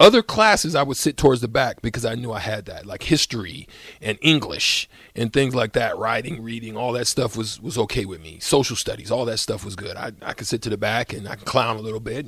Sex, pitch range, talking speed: male, 110-155 Hz, 260 wpm